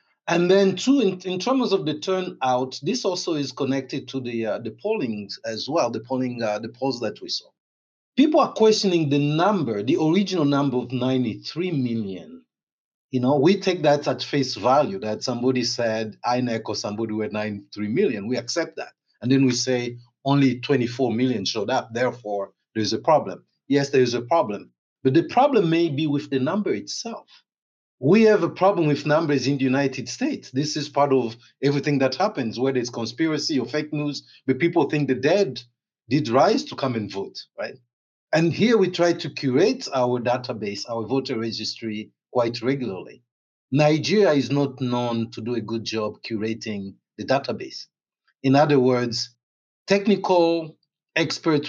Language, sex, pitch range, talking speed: English, male, 120-155 Hz, 180 wpm